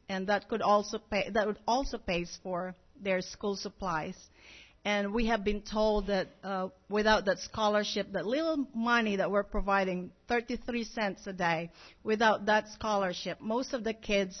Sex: female